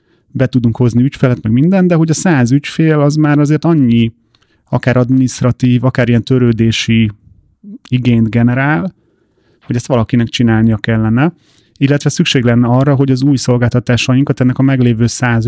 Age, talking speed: 30-49, 150 wpm